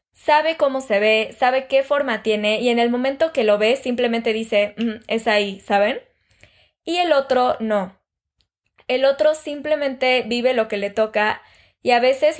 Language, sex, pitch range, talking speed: Spanish, female, 215-265 Hz, 170 wpm